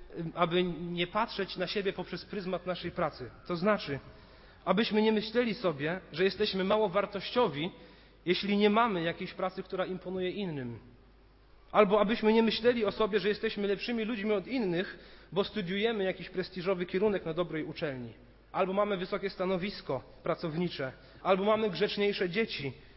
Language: Polish